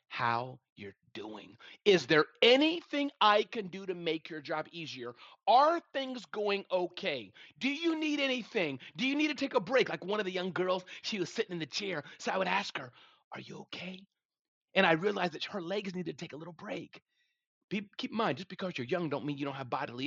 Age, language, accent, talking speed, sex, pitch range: 40-59, English, American, 220 wpm, male, 175-260 Hz